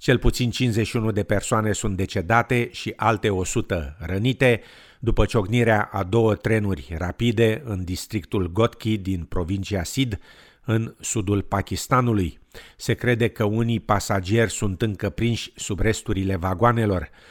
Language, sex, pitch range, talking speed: Romanian, male, 95-115 Hz, 130 wpm